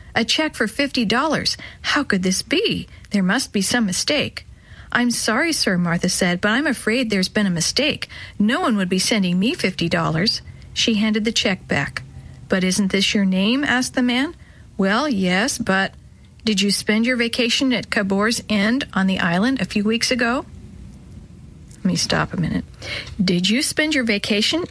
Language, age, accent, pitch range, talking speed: English, 50-69, American, 195-245 Hz, 175 wpm